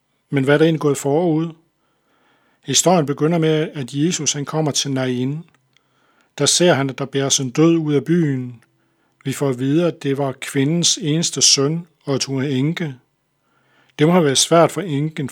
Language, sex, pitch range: Danish, male, 135-160 Hz